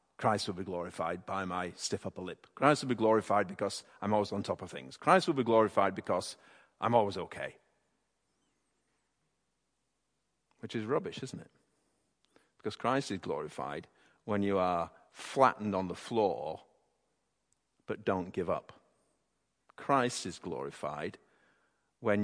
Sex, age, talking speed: male, 50-69, 140 wpm